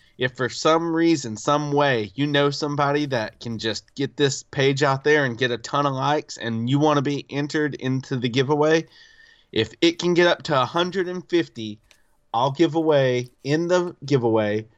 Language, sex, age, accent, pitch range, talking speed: English, male, 30-49, American, 120-155 Hz, 185 wpm